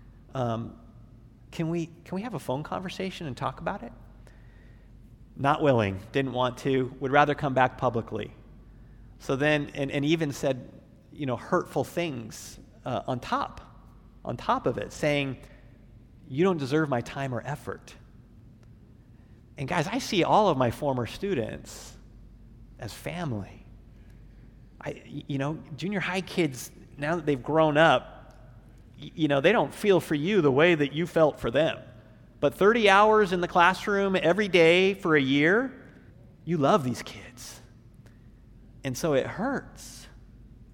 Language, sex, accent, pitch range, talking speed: English, male, American, 115-155 Hz, 150 wpm